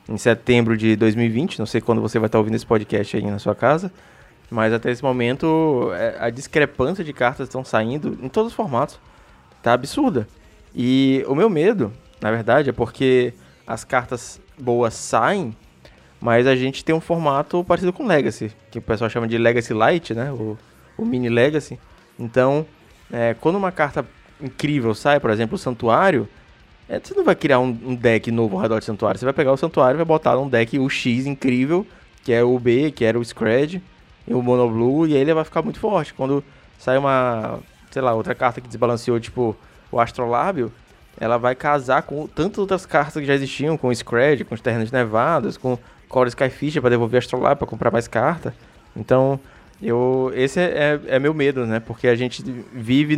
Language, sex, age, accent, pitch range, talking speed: Portuguese, male, 20-39, Brazilian, 115-140 Hz, 200 wpm